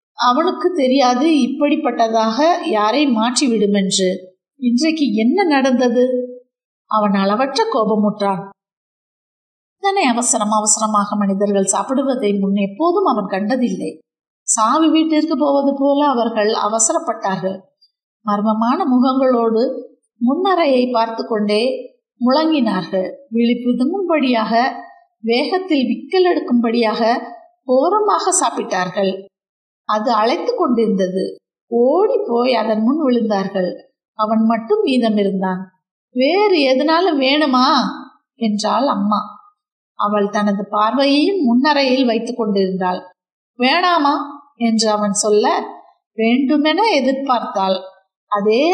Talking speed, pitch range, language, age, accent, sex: 80 wpm, 210-285 Hz, Tamil, 50-69, native, female